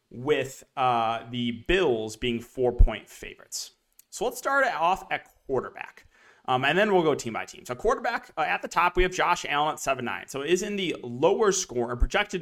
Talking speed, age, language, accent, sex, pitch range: 215 wpm, 30-49, English, American, male, 120-155 Hz